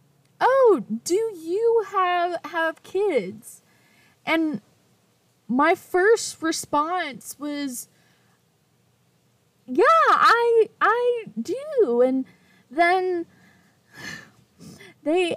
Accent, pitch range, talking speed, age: American, 235-355 Hz, 70 wpm, 10-29